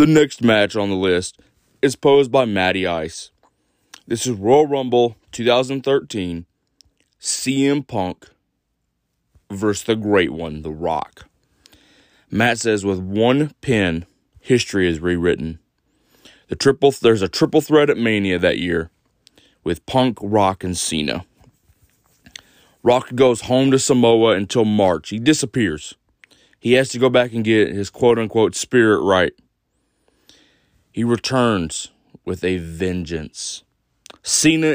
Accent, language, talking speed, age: American, English, 130 wpm, 30-49